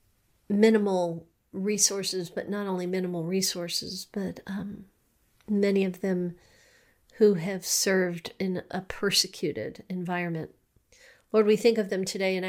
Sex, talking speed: female, 125 wpm